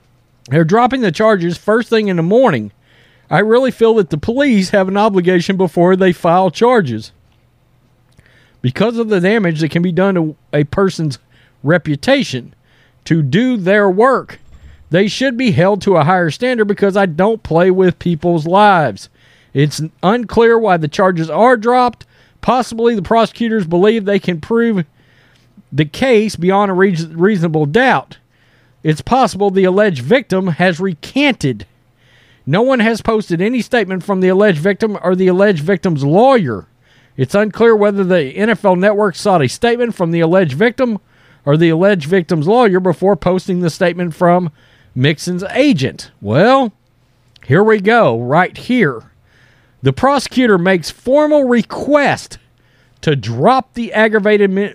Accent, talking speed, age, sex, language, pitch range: American, 150 wpm, 40-59, male, English, 140-215 Hz